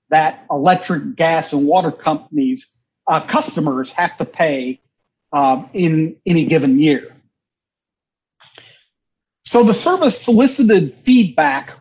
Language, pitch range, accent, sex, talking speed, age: English, 155-220 Hz, American, male, 105 wpm, 40-59